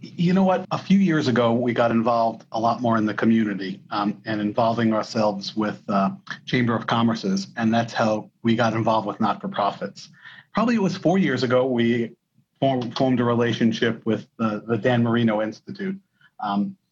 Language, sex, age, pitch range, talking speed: English, male, 40-59, 115-140 Hz, 175 wpm